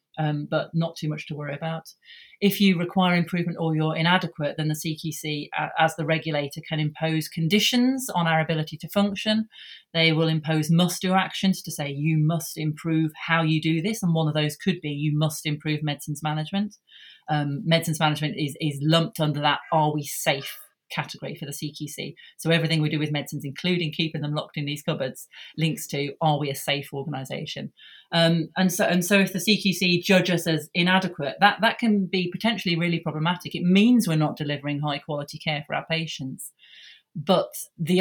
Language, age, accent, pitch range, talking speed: English, 30-49, British, 155-180 Hz, 190 wpm